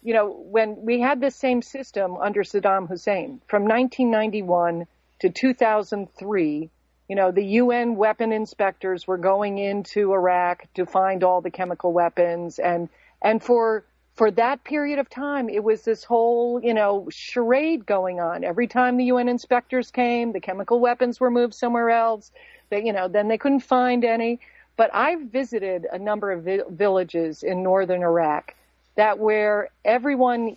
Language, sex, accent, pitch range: English, female, American, 185-235 Hz